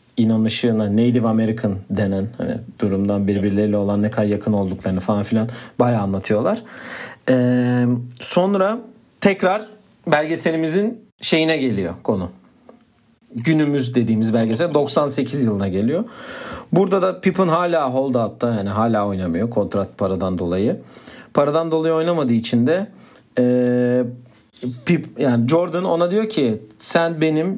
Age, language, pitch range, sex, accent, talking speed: 40-59, Turkish, 110-170 Hz, male, native, 120 wpm